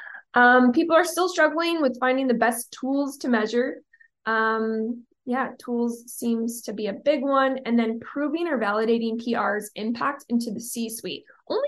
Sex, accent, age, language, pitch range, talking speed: female, American, 20-39, English, 225-275 Hz, 165 wpm